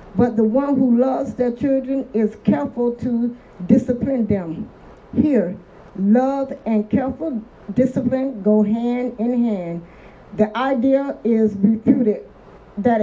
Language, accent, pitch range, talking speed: English, American, 215-255 Hz, 120 wpm